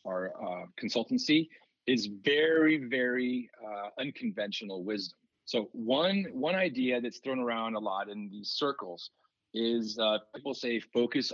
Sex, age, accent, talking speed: male, 40-59, American, 140 wpm